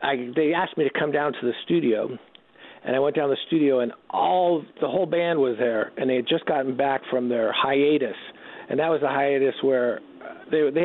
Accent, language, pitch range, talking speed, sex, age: American, English, 130-155 Hz, 225 wpm, male, 50-69